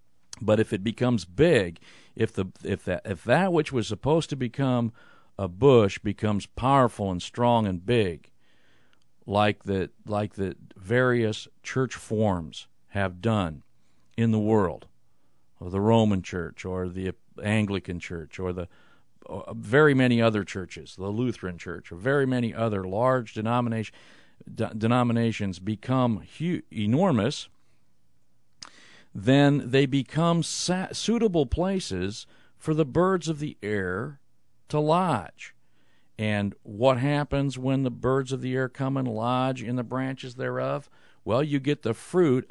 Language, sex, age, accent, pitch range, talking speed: English, male, 50-69, American, 100-130 Hz, 140 wpm